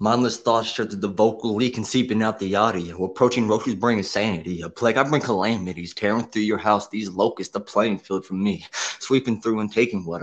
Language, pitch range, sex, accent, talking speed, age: English, 100-120 Hz, male, American, 225 wpm, 20-39